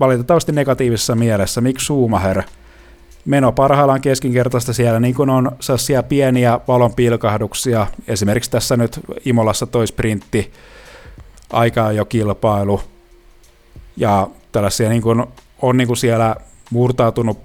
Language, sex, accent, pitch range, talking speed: Finnish, male, native, 105-125 Hz, 110 wpm